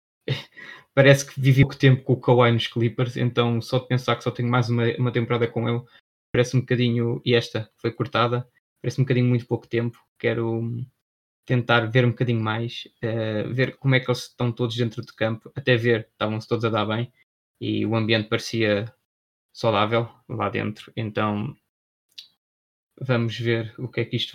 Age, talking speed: 20-39, 185 wpm